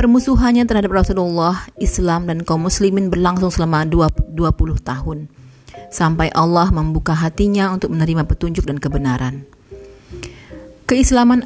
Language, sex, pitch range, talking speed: Indonesian, female, 140-185 Hz, 110 wpm